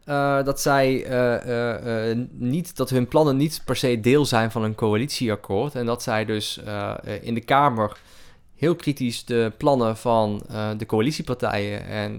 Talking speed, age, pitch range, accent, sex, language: 175 wpm, 20-39, 110-140 Hz, Dutch, male, Dutch